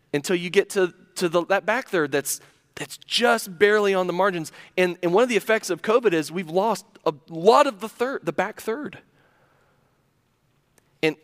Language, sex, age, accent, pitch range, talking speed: English, male, 30-49, American, 170-240 Hz, 190 wpm